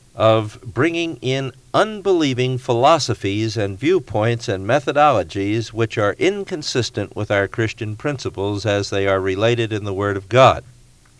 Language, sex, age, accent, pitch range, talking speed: English, male, 50-69, American, 100-125 Hz, 135 wpm